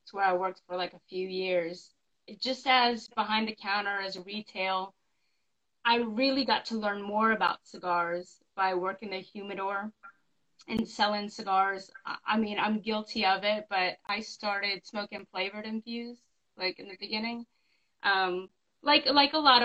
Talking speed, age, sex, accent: 160 wpm, 20-39, female, American